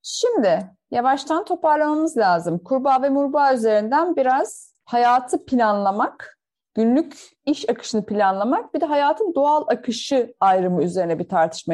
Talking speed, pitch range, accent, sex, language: 125 wpm, 200-290 Hz, native, female, Turkish